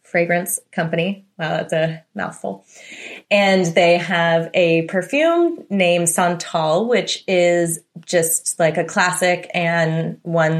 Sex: female